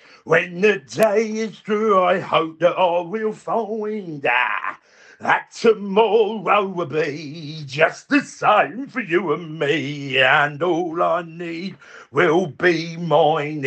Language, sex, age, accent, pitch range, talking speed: English, male, 50-69, British, 155-225 Hz, 130 wpm